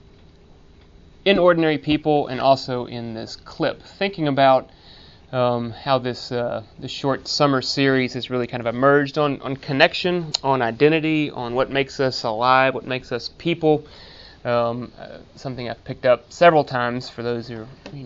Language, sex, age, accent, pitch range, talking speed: English, male, 30-49, American, 120-145 Hz, 170 wpm